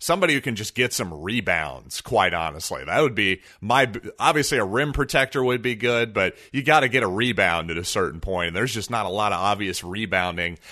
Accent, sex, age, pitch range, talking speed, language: American, male, 30-49, 105-135 Hz, 220 wpm, English